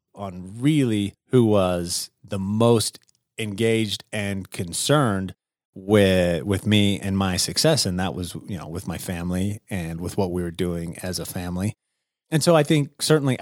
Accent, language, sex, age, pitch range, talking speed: American, English, male, 30-49, 100-130 Hz, 165 wpm